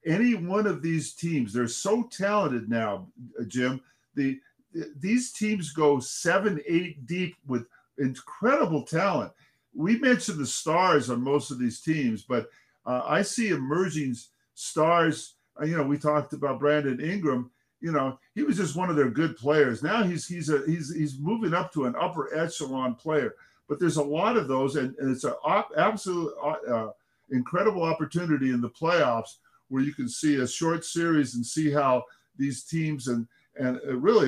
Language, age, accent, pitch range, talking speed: English, 50-69, American, 130-170 Hz, 165 wpm